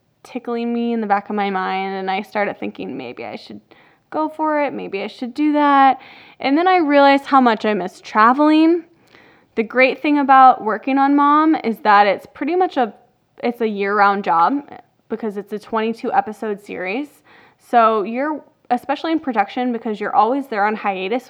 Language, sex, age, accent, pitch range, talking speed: English, female, 10-29, American, 200-265 Hz, 180 wpm